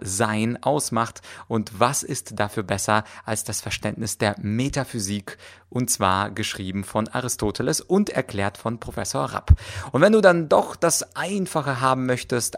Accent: German